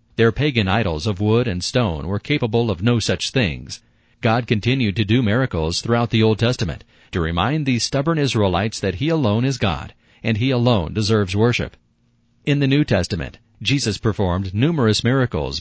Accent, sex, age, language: American, male, 40-59, English